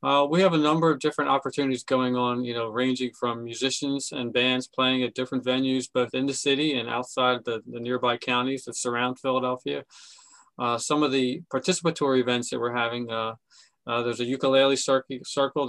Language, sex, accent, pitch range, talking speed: English, male, American, 120-135 Hz, 185 wpm